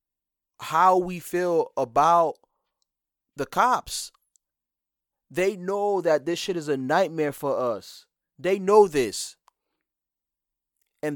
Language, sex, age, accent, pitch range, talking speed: English, male, 30-49, American, 145-195 Hz, 110 wpm